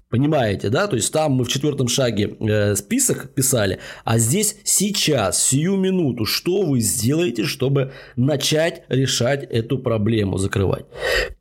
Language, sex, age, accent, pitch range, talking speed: Russian, male, 20-39, native, 115-150 Hz, 130 wpm